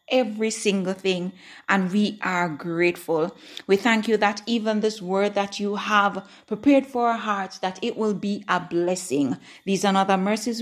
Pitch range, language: 185-225 Hz, English